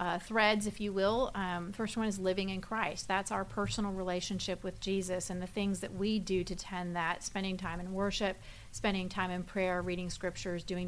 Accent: American